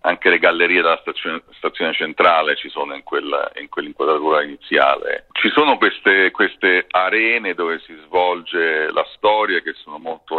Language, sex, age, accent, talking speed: Italian, male, 40-59, native, 155 wpm